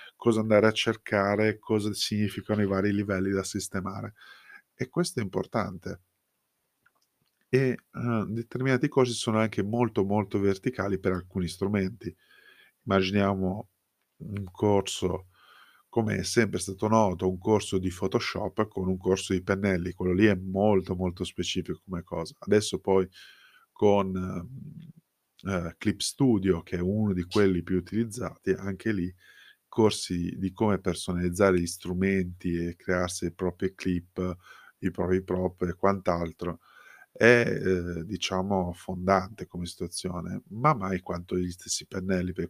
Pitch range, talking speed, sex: 90-110 Hz, 135 wpm, male